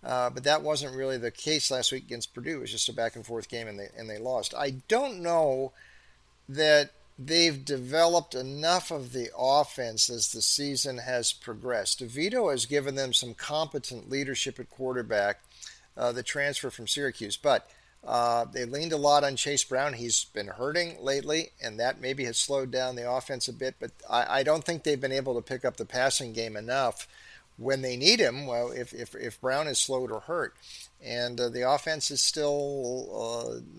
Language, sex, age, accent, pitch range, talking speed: English, male, 50-69, American, 120-145 Hz, 195 wpm